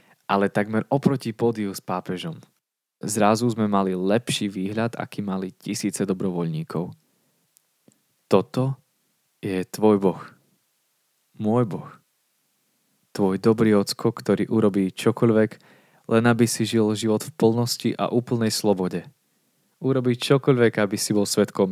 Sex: male